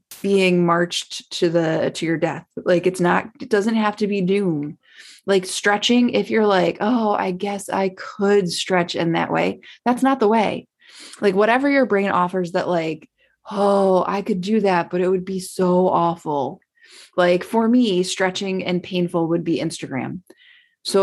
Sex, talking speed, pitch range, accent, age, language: female, 175 wpm, 180-250 Hz, American, 20-39, English